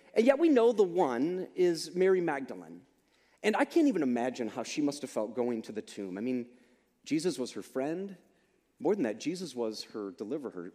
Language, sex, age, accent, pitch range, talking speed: English, male, 30-49, American, 125-185 Hz, 200 wpm